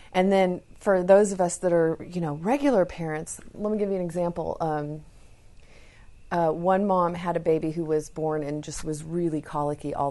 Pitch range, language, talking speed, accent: 150-180 Hz, English, 200 wpm, American